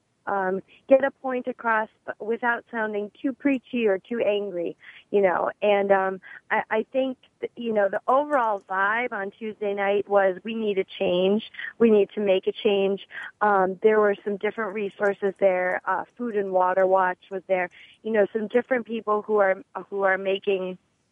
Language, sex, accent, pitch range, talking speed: English, female, American, 190-230 Hz, 185 wpm